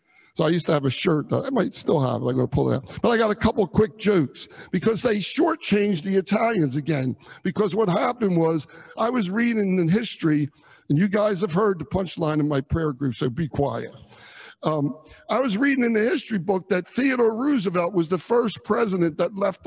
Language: English